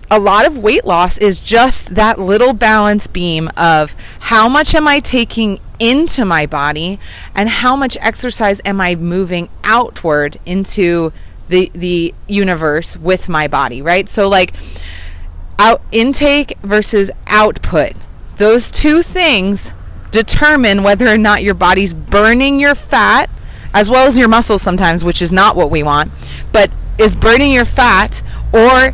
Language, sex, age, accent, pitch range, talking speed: English, female, 30-49, American, 180-235 Hz, 150 wpm